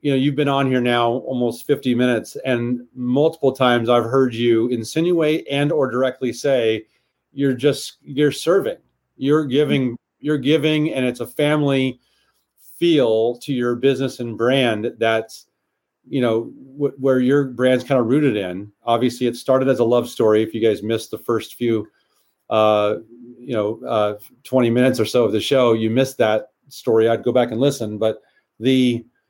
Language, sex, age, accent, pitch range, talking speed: English, male, 40-59, American, 120-135 Hz, 175 wpm